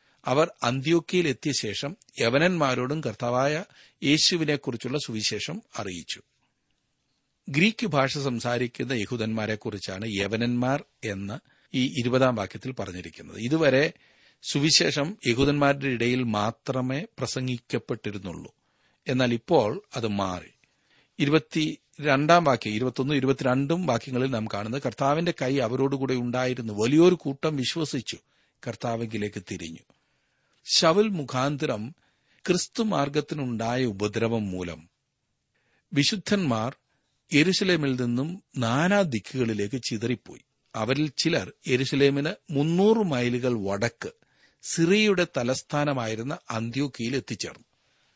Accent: native